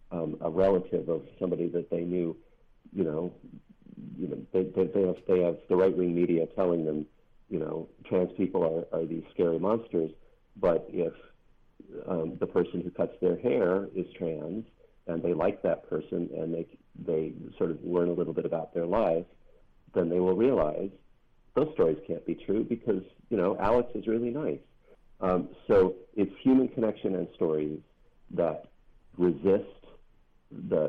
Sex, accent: male, American